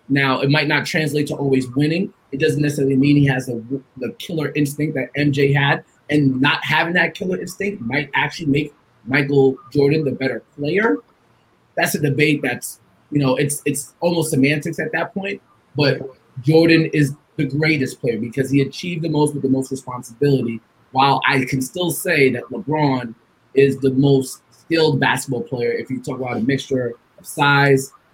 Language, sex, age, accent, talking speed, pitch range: English, male, 20-39, American, 180 wpm, 130-150 Hz